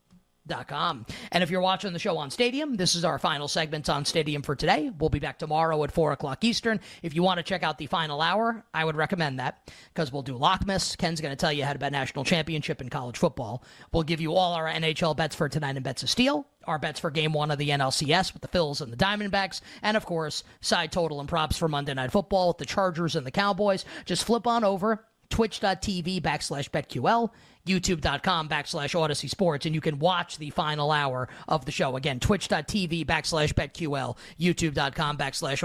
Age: 30-49